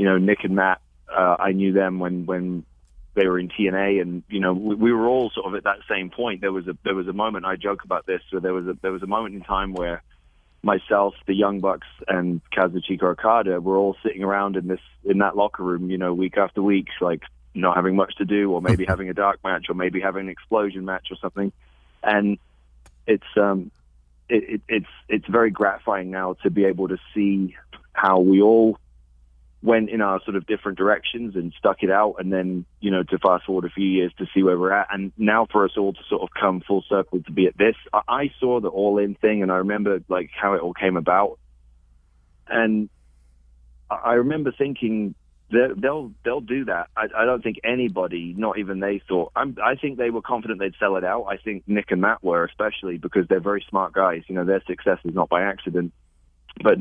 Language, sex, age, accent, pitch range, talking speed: English, male, 20-39, British, 90-100 Hz, 230 wpm